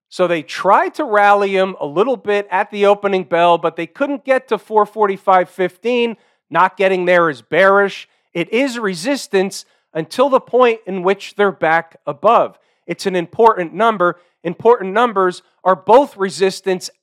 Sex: male